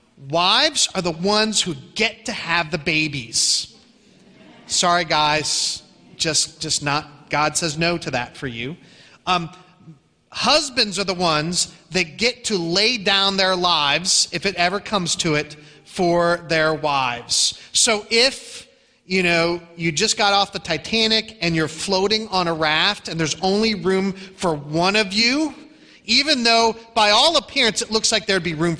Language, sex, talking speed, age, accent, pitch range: English, male, 165 wpm, 30-49, American, 155-220 Hz